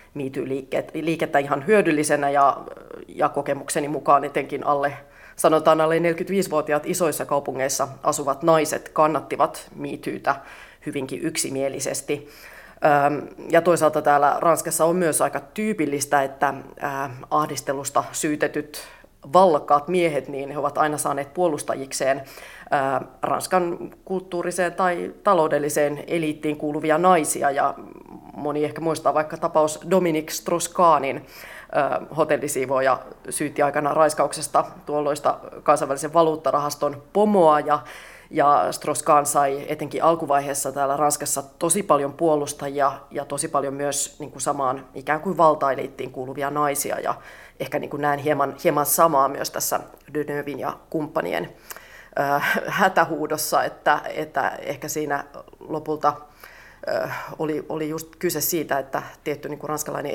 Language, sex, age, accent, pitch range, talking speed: Finnish, female, 30-49, native, 140-160 Hz, 105 wpm